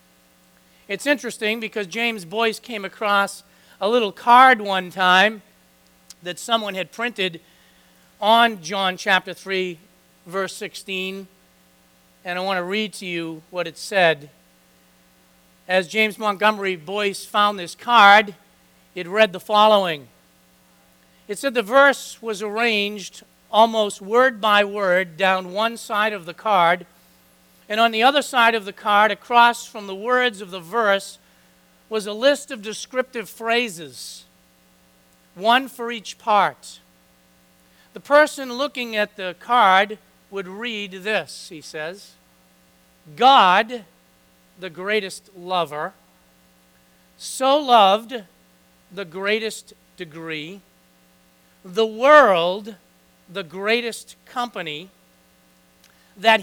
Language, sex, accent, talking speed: English, male, American, 115 wpm